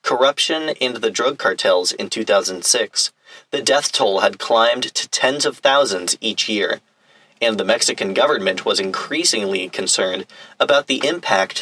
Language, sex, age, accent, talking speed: English, male, 40-59, American, 145 wpm